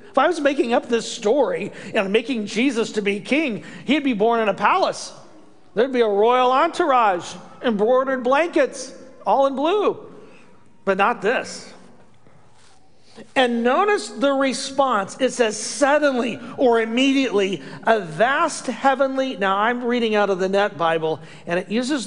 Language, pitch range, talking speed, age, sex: English, 195-260 Hz, 150 wpm, 40-59, male